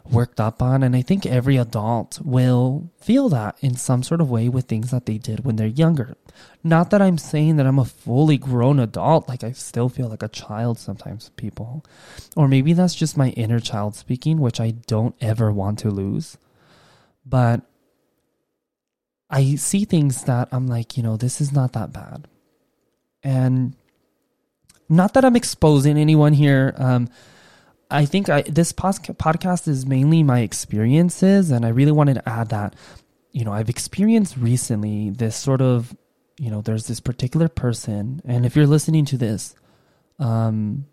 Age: 20-39